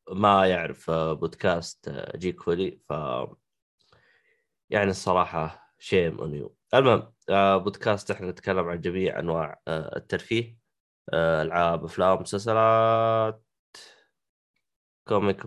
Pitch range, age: 85-100 Hz, 20-39